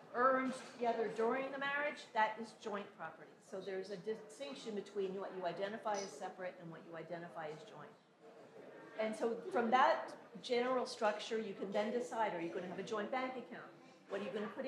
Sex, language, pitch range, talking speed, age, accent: female, English, 180-235 Hz, 205 wpm, 40-59, American